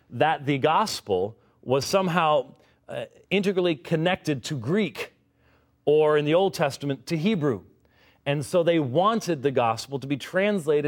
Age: 40-59